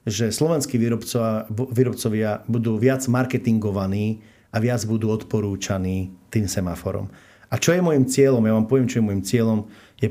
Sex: male